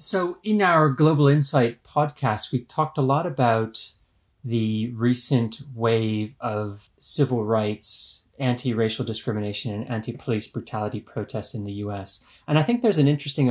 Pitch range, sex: 105-130 Hz, male